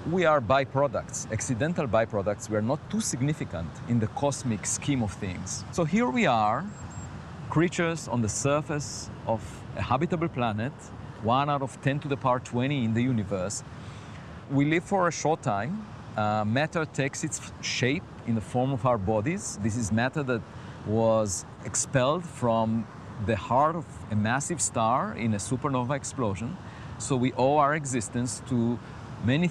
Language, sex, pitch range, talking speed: English, male, 110-145 Hz, 165 wpm